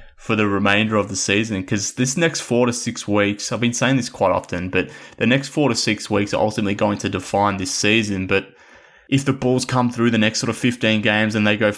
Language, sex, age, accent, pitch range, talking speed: English, male, 20-39, Australian, 100-110 Hz, 245 wpm